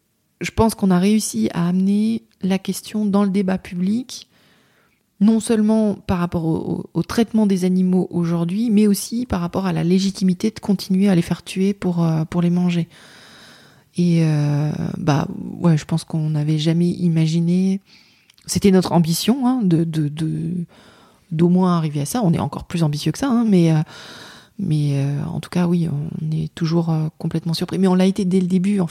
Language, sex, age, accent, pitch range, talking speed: French, female, 30-49, French, 165-195 Hz, 195 wpm